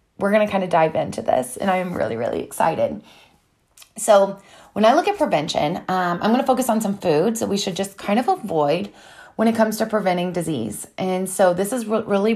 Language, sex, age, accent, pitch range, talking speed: English, female, 30-49, American, 175-225 Hz, 225 wpm